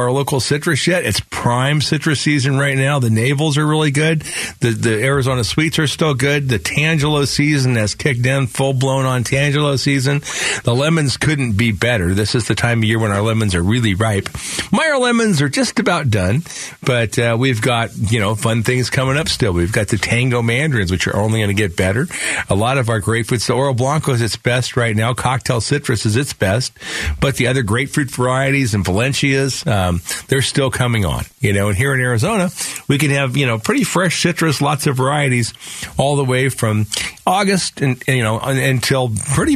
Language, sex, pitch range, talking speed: English, male, 110-140 Hz, 210 wpm